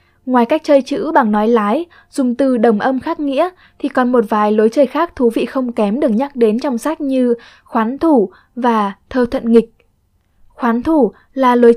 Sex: female